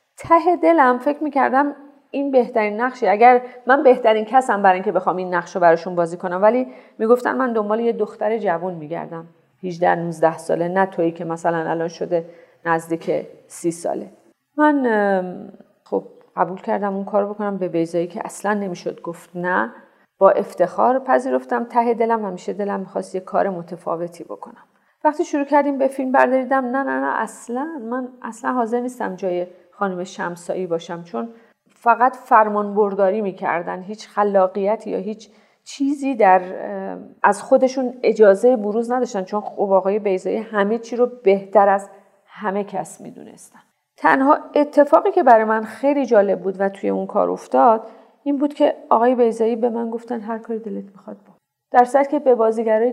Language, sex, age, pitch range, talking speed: Persian, female, 40-59, 185-255 Hz, 165 wpm